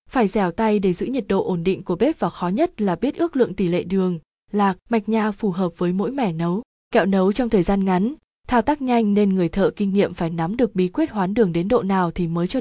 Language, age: Vietnamese, 20-39